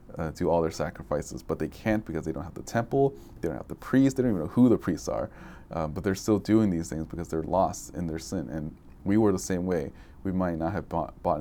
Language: English